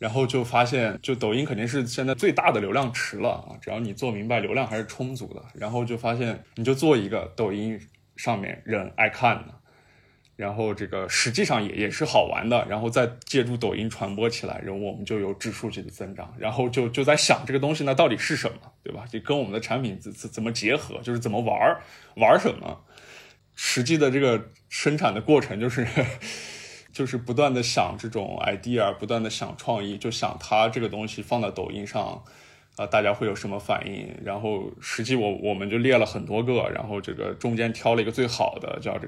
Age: 20-39